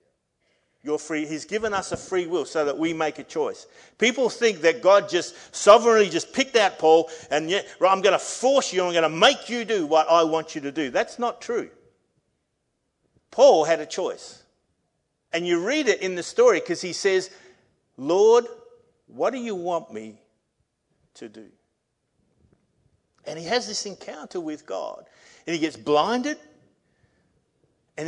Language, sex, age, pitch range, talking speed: English, male, 50-69, 150-215 Hz, 170 wpm